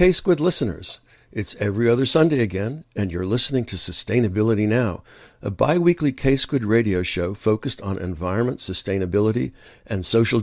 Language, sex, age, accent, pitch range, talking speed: English, male, 60-79, American, 100-130 Hz, 145 wpm